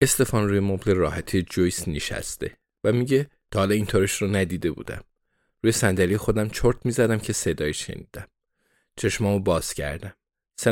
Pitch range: 90-120 Hz